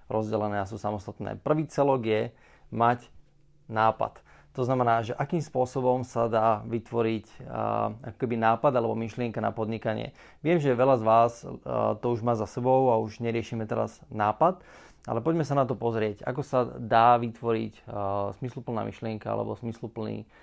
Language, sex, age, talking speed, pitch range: Slovak, male, 30-49, 160 wpm, 110-130 Hz